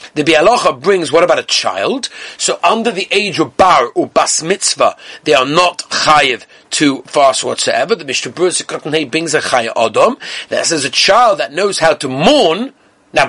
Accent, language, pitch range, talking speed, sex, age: British, English, 145-210 Hz, 175 wpm, male, 40-59